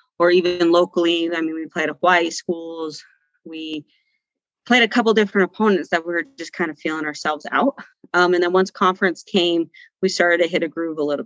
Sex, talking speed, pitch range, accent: female, 210 wpm, 165-190 Hz, American